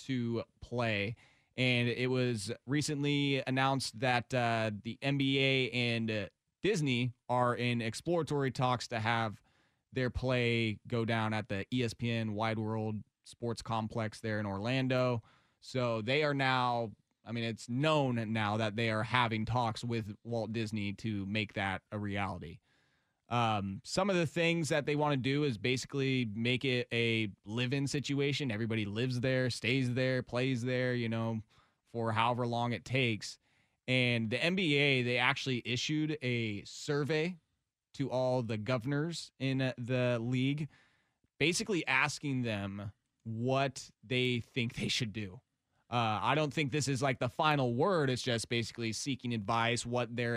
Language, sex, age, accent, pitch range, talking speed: English, male, 20-39, American, 115-130 Hz, 155 wpm